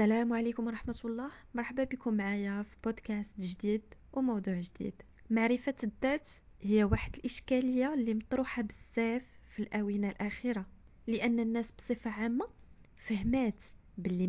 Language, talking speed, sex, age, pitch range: Arabic, 120 wpm, female, 20-39, 210-265 Hz